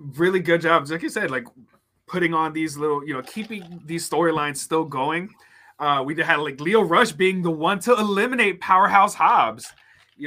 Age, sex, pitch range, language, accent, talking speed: 30-49, male, 160-215 Hz, English, American, 185 wpm